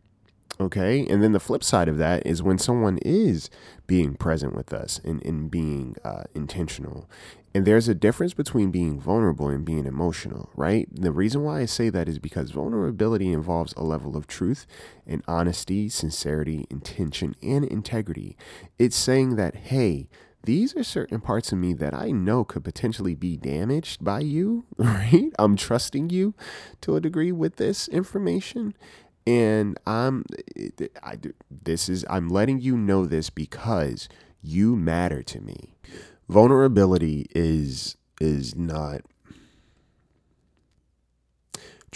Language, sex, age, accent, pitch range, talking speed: English, male, 30-49, American, 80-110 Hz, 145 wpm